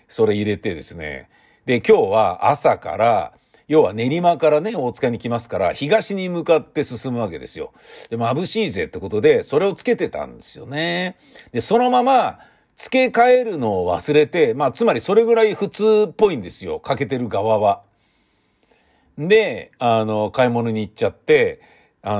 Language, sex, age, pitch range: Japanese, male, 50-69, 135-220 Hz